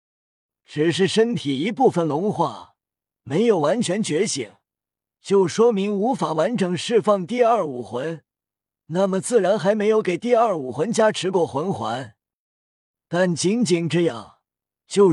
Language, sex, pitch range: Chinese, male, 160-220 Hz